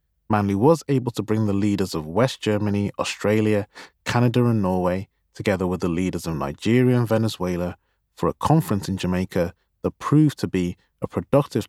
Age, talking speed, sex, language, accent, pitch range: 30-49, 170 wpm, male, English, British, 90-125 Hz